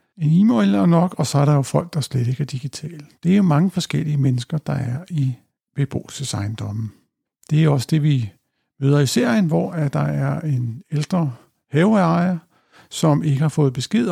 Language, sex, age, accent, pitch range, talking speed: Danish, male, 60-79, native, 135-165 Hz, 190 wpm